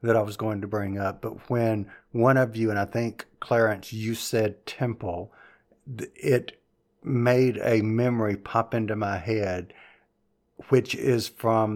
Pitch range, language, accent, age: 105-130 Hz, English, American, 50-69